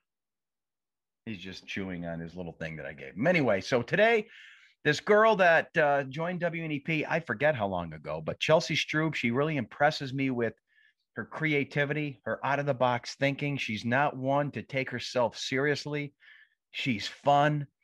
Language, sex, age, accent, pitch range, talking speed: English, male, 40-59, American, 115-145 Hz, 160 wpm